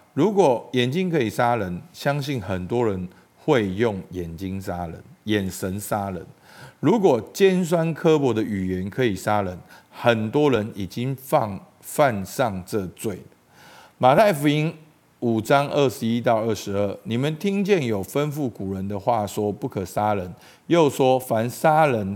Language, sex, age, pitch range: Chinese, male, 50-69, 100-145 Hz